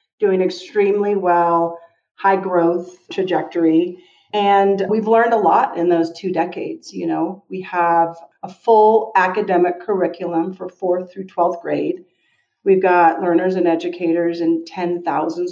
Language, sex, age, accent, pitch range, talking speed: English, female, 40-59, American, 170-205 Hz, 135 wpm